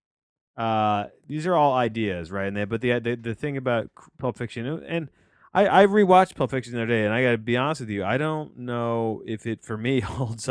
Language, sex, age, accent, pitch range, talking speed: English, male, 30-49, American, 100-125 Hz, 230 wpm